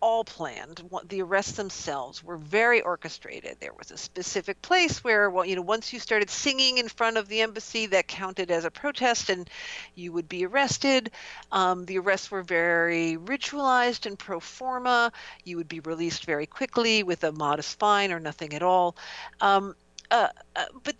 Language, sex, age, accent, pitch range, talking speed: English, female, 50-69, American, 165-235 Hz, 180 wpm